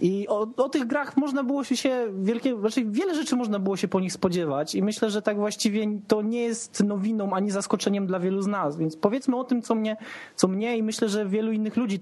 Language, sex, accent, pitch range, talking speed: Polish, male, native, 195-245 Hz, 240 wpm